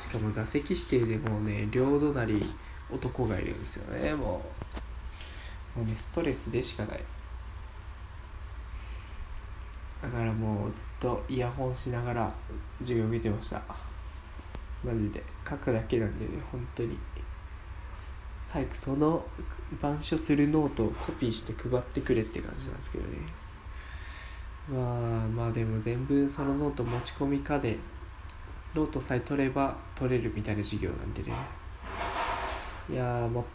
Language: Japanese